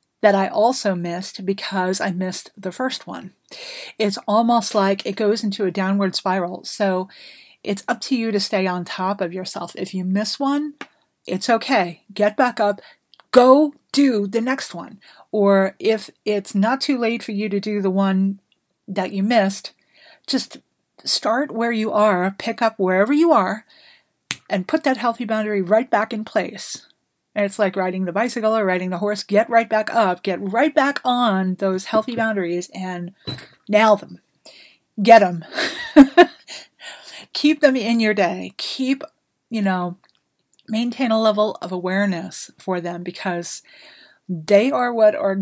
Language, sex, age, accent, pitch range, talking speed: English, female, 40-59, American, 185-230 Hz, 165 wpm